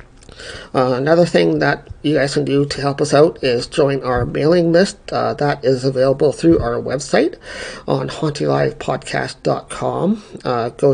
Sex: male